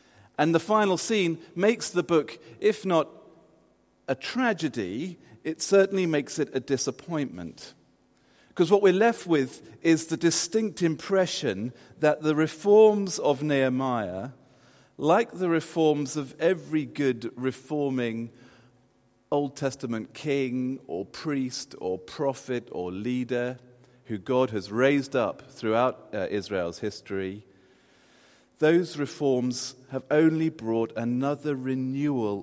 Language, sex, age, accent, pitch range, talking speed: English, male, 40-59, British, 120-160 Hz, 115 wpm